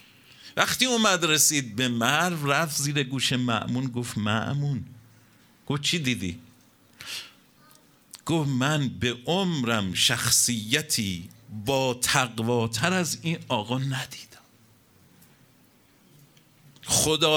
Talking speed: 90 wpm